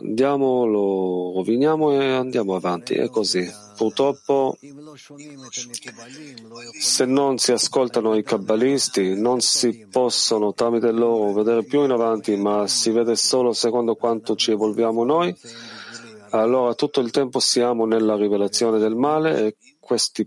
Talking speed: 130 wpm